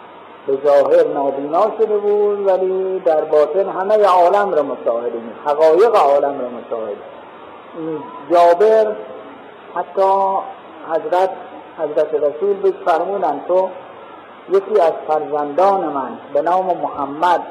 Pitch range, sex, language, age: 155-210 Hz, male, Persian, 50-69